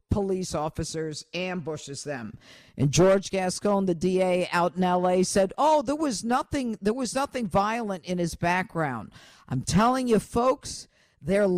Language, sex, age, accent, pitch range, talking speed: English, female, 50-69, American, 165-215 Hz, 150 wpm